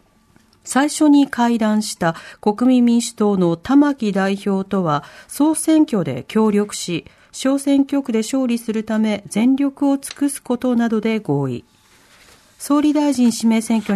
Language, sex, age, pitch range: Japanese, female, 40-59, 195-270 Hz